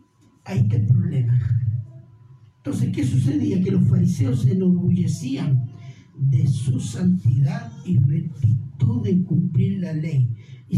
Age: 50-69